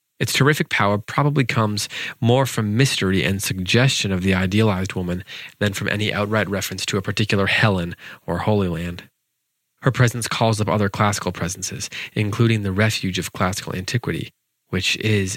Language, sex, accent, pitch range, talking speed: English, male, American, 95-115 Hz, 160 wpm